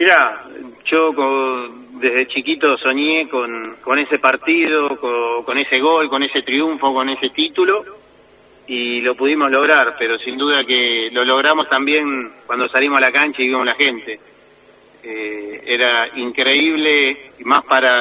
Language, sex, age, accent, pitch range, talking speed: Spanish, male, 30-49, Argentinian, 125-155 Hz, 150 wpm